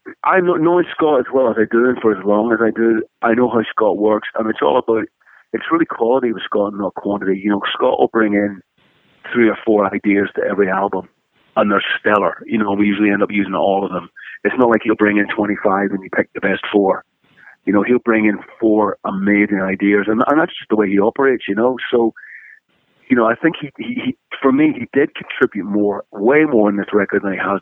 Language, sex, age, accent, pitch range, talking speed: English, male, 40-59, American, 95-115 Hz, 240 wpm